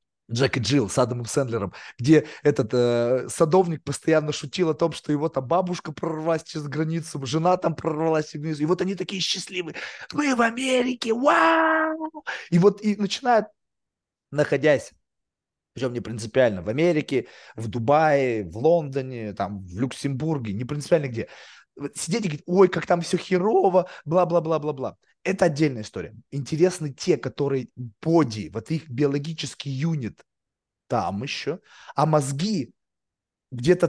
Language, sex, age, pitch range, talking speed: Russian, male, 30-49, 140-180 Hz, 140 wpm